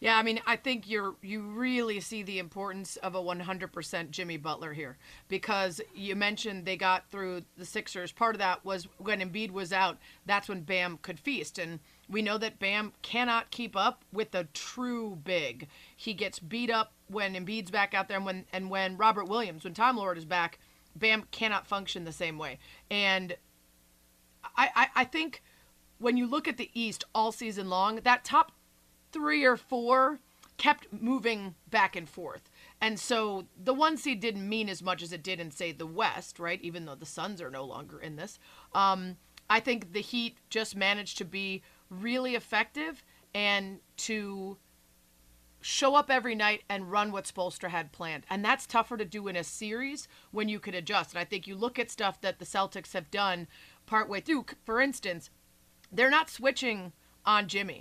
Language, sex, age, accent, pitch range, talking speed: English, female, 30-49, American, 180-225 Hz, 190 wpm